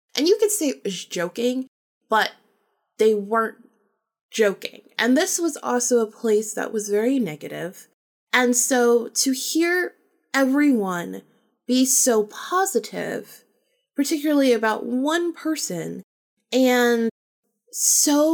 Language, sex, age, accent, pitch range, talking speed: English, female, 20-39, American, 205-285 Hz, 115 wpm